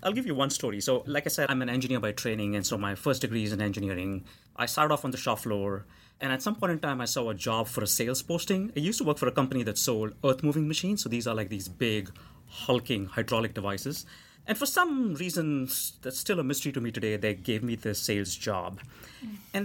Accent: Indian